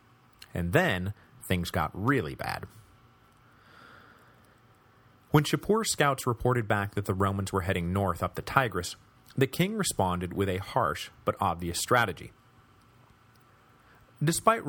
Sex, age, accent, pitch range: male, 30-49, American, 95-125 Hz